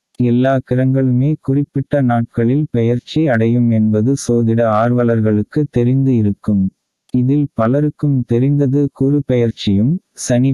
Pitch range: 115-130 Hz